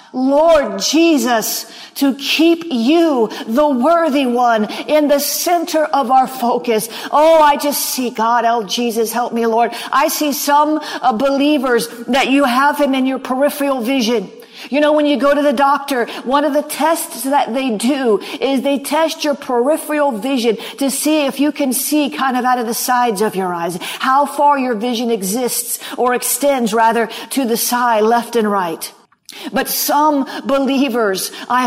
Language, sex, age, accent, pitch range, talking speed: English, female, 50-69, American, 240-300 Hz, 170 wpm